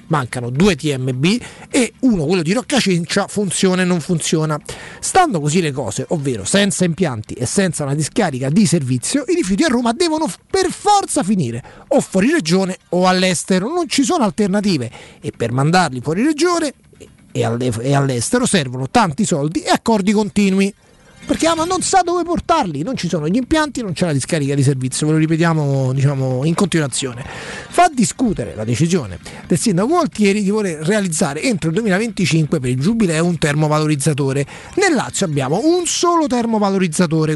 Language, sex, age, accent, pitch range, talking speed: Italian, male, 30-49, native, 150-240 Hz, 165 wpm